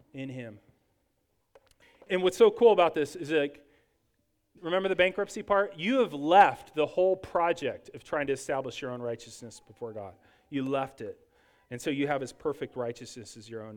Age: 40-59